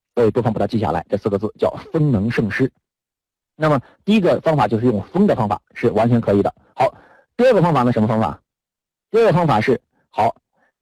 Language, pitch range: Chinese, 115-165 Hz